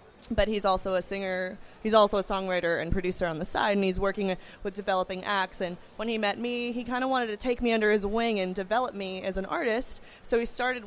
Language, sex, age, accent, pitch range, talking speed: English, female, 20-39, American, 185-220 Hz, 245 wpm